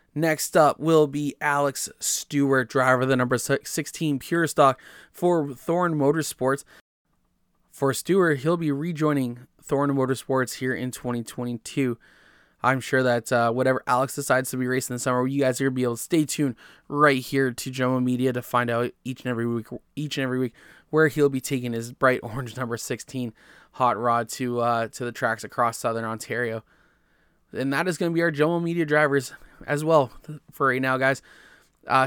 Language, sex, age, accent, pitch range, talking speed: English, male, 20-39, American, 125-155 Hz, 190 wpm